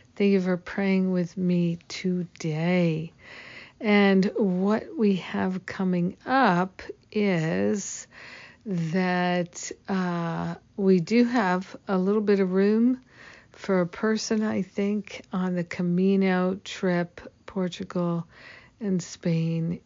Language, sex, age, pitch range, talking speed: English, female, 50-69, 175-200 Hz, 110 wpm